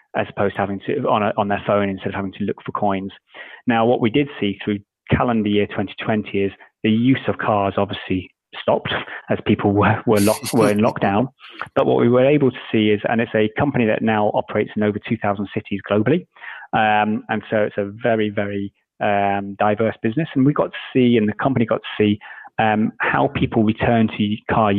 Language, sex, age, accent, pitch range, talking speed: English, male, 30-49, British, 105-125 Hz, 215 wpm